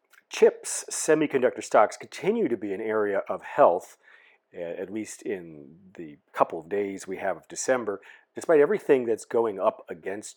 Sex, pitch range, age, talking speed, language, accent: male, 95-140 Hz, 40-59, 155 wpm, English, American